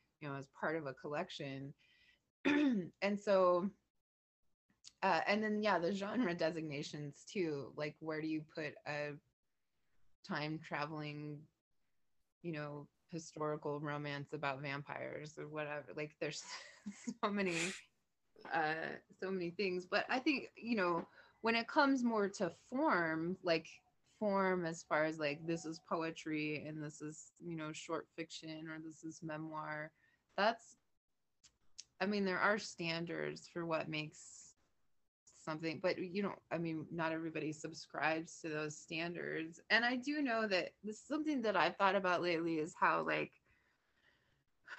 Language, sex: English, female